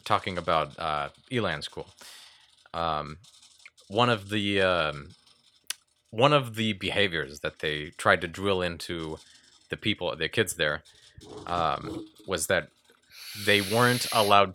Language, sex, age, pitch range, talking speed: English, male, 30-49, 90-115 Hz, 130 wpm